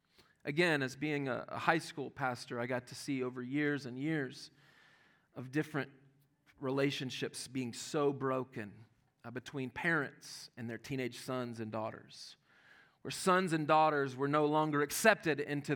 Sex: male